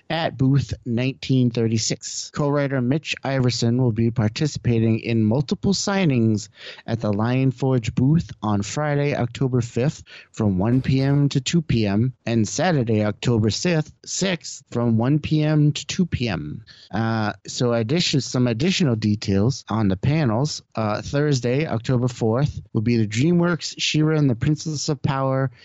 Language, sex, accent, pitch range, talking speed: English, male, American, 115-150 Hz, 140 wpm